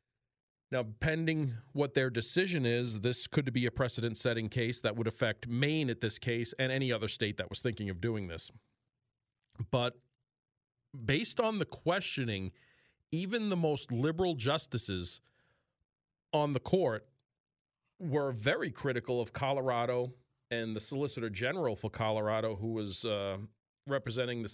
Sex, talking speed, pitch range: male, 140 wpm, 115-145 Hz